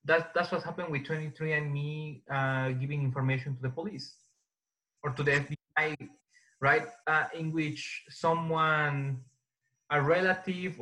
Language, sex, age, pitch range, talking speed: English, male, 20-39, 130-155 Hz, 135 wpm